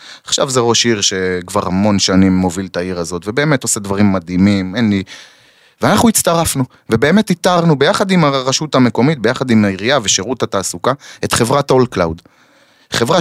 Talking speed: 160 wpm